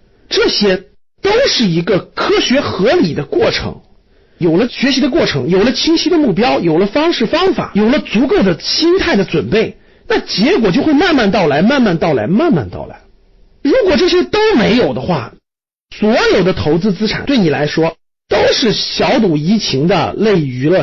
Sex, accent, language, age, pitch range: male, native, Chinese, 50-69, 180-295 Hz